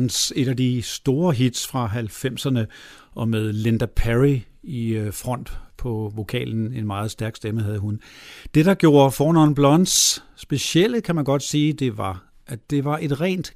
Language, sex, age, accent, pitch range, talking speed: Danish, male, 50-69, native, 115-150 Hz, 170 wpm